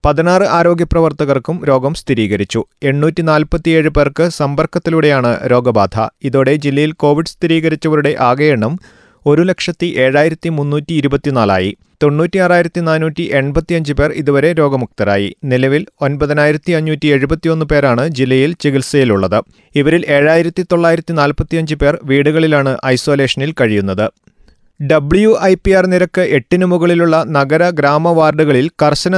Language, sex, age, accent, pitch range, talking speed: Malayalam, male, 30-49, native, 135-160 Hz, 105 wpm